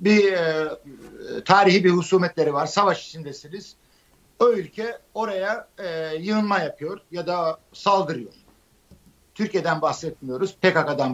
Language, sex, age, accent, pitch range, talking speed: Turkish, male, 60-79, native, 155-205 Hz, 95 wpm